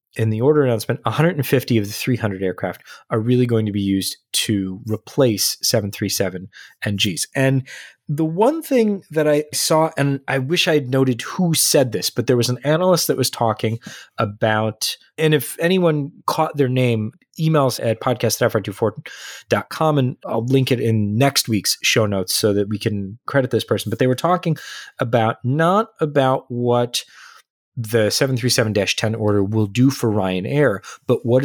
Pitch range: 110-145 Hz